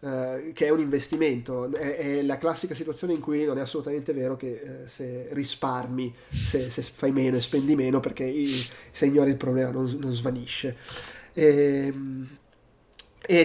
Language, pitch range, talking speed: Italian, 130-155 Hz, 165 wpm